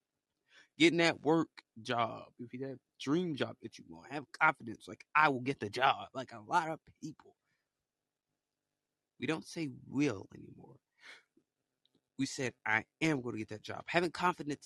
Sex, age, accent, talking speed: male, 20-39, American, 170 wpm